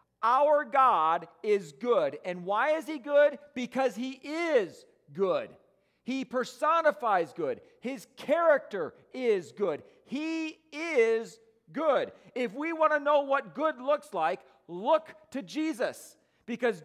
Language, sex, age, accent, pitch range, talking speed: English, male, 40-59, American, 225-305 Hz, 130 wpm